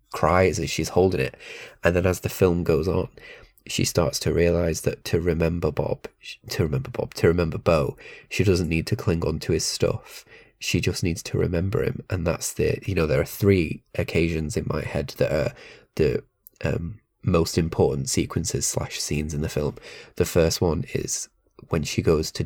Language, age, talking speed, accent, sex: English, 20-39, 195 wpm, British, male